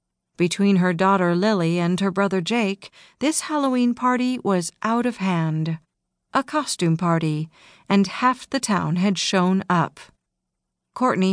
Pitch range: 175-235 Hz